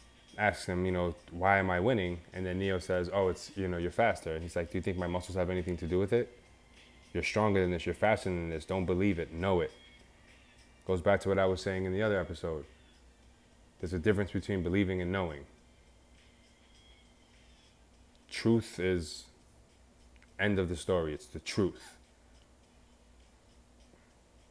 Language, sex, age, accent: English, male, 20-39, American